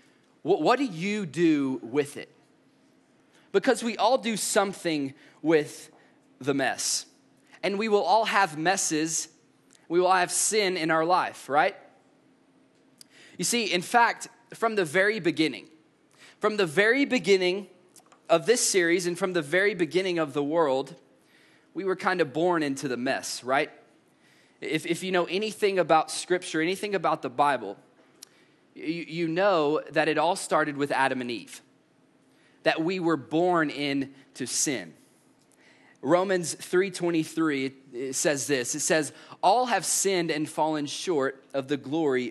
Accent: American